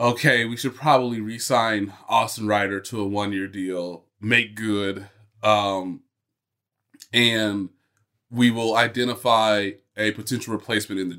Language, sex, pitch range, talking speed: English, male, 105-135 Hz, 125 wpm